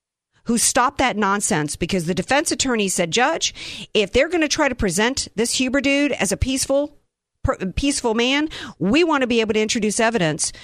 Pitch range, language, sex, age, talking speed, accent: 185-260 Hz, English, female, 50-69, 185 wpm, American